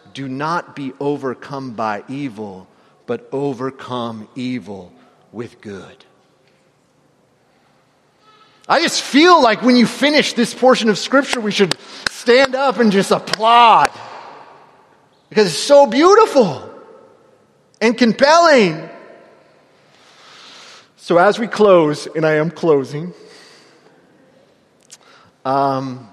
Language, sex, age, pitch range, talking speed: English, male, 30-49, 140-210 Hz, 100 wpm